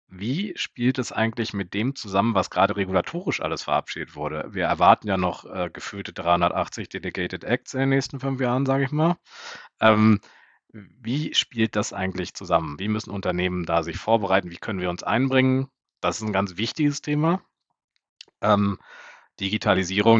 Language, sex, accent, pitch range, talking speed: German, male, German, 90-115 Hz, 165 wpm